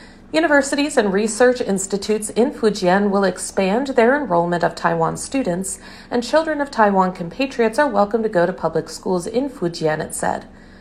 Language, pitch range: Chinese, 180-250 Hz